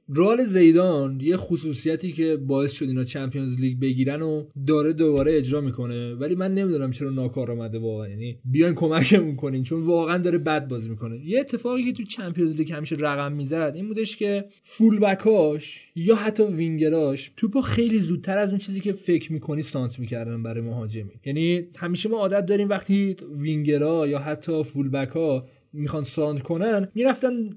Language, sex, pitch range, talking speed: Persian, male, 140-200 Hz, 170 wpm